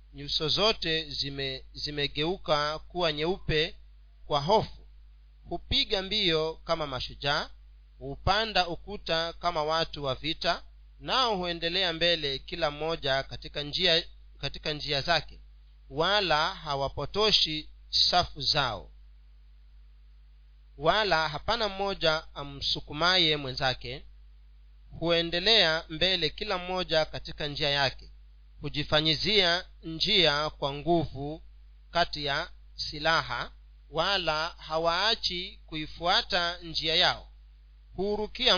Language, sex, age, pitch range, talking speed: Swahili, male, 40-59, 135-175 Hz, 90 wpm